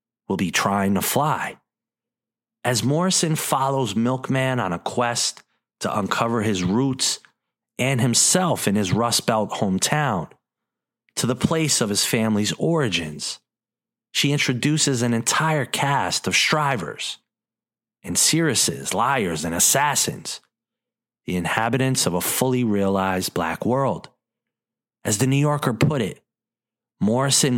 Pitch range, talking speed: 100-135 Hz, 125 wpm